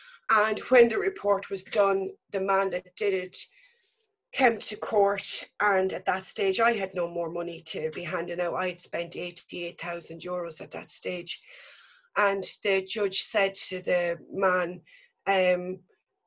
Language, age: English, 30-49